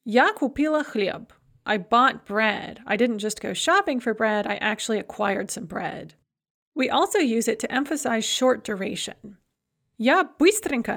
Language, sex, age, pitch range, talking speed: English, female, 30-49, 215-275 Hz, 155 wpm